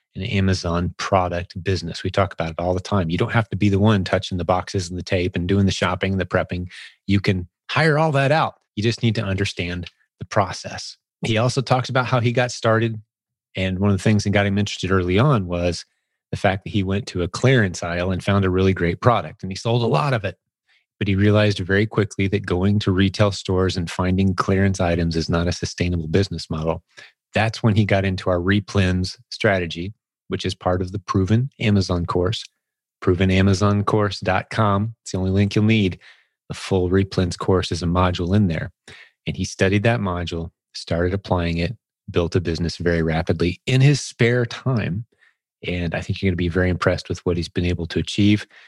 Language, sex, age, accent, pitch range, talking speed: English, male, 30-49, American, 90-105 Hz, 210 wpm